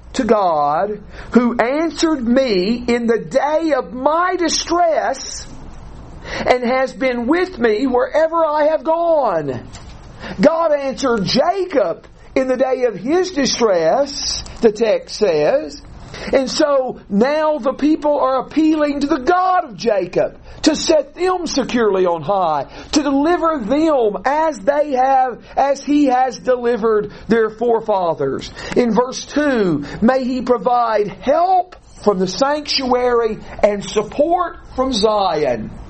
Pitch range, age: 205-280 Hz, 50-69